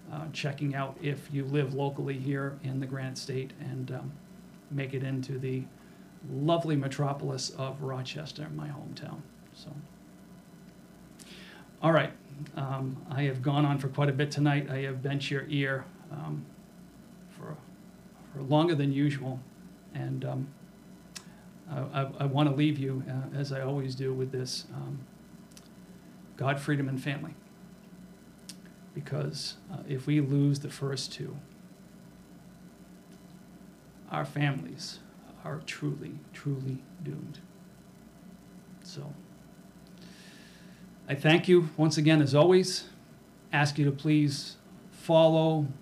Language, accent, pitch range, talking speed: English, American, 140-180 Hz, 125 wpm